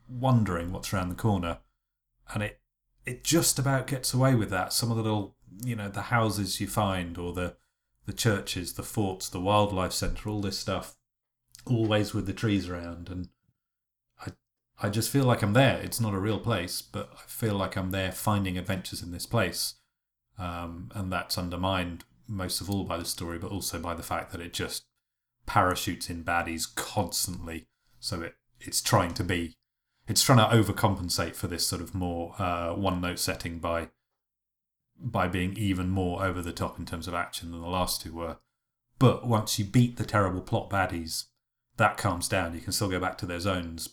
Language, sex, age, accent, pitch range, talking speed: English, male, 30-49, British, 85-105 Hz, 195 wpm